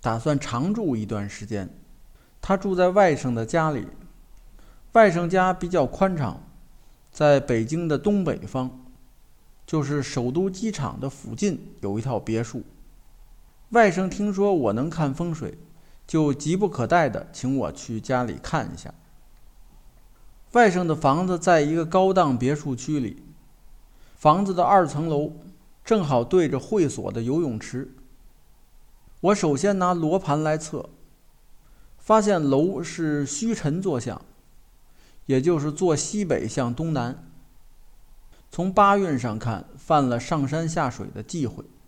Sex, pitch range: male, 125-185 Hz